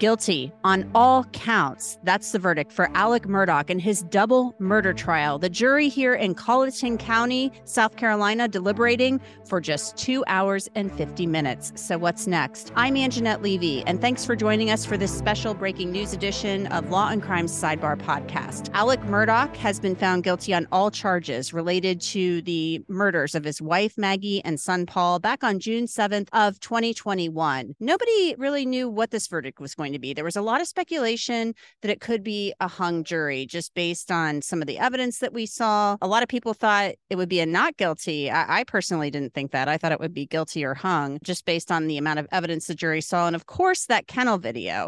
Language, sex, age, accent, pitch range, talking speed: English, female, 30-49, American, 170-225 Hz, 205 wpm